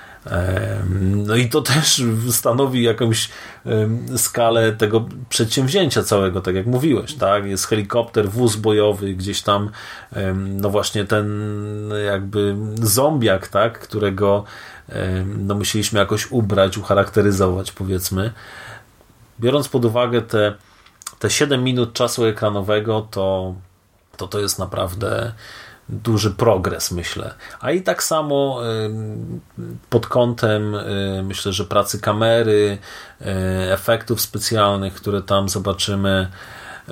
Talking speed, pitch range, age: 105 wpm, 100-120 Hz, 30-49